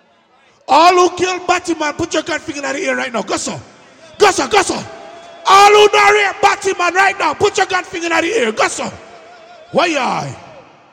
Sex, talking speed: male, 180 wpm